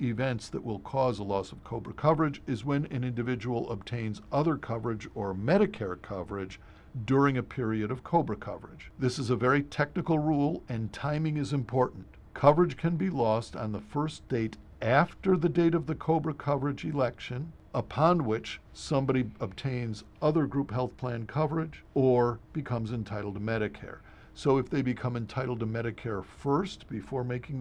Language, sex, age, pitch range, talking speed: English, male, 50-69, 110-145 Hz, 165 wpm